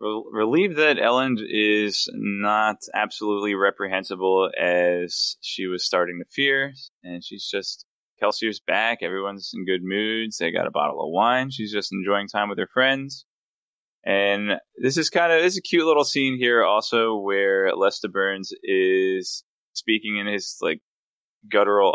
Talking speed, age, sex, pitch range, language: 160 wpm, 20-39, male, 95-120 Hz, English